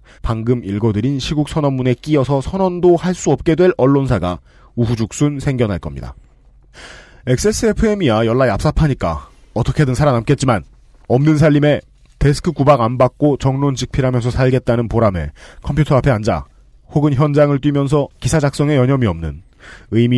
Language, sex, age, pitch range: Korean, male, 30-49, 110-150 Hz